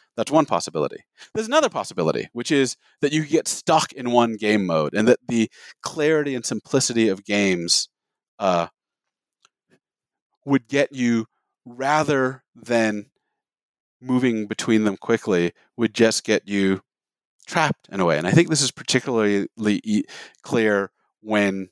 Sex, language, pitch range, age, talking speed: male, English, 105-145 Hz, 40-59, 140 wpm